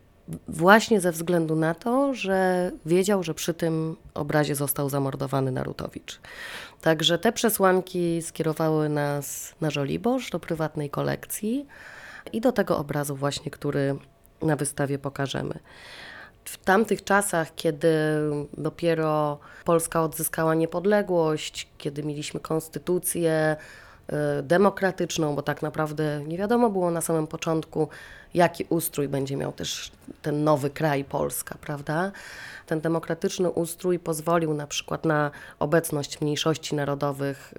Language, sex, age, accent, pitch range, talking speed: Polish, female, 20-39, native, 145-170 Hz, 120 wpm